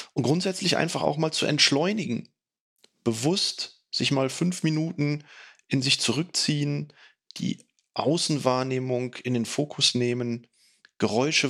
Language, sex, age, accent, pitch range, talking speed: German, male, 30-49, German, 120-160 Hz, 115 wpm